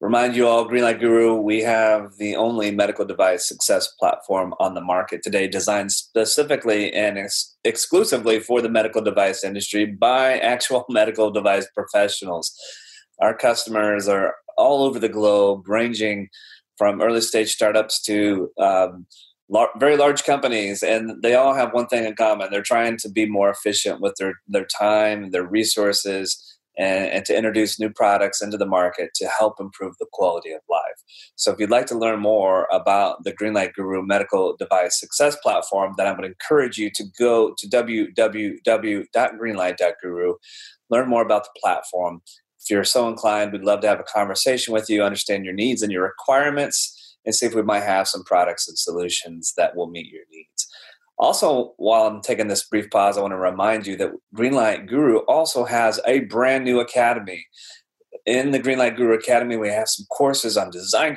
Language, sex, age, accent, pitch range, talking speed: English, male, 30-49, American, 100-120 Hz, 175 wpm